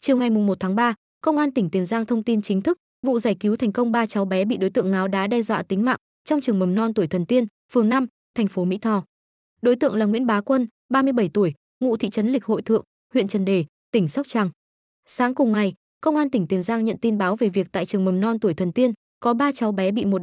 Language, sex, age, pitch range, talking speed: Vietnamese, female, 20-39, 200-250 Hz, 270 wpm